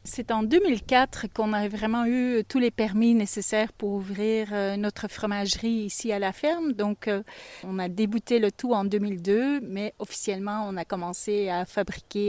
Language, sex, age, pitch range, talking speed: French, female, 30-49, 200-245 Hz, 165 wpm